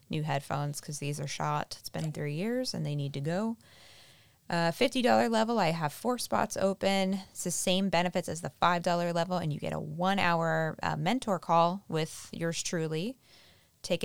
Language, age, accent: English, 20-39, American